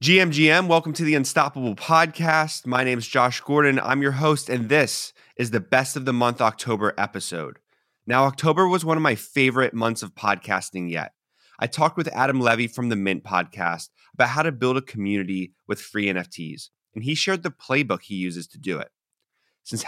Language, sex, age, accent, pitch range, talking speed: English, male, 30-49, American, 105-135 Hz, 195 wpm